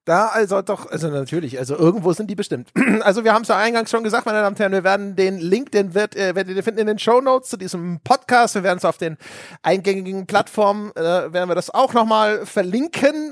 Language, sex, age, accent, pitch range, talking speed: German, male, 30-49, German, 170-220 Hz, 240 wpm